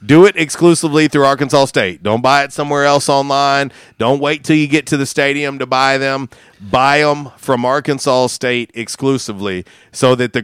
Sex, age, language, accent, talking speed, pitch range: male, 40-59, English, American, 185 wpm, 110-140 Hz